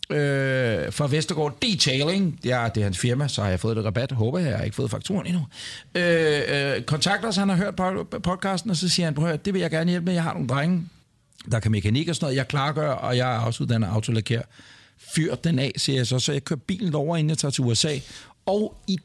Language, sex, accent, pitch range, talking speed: Danish, male, native, 130-175 Hz, 245 wpm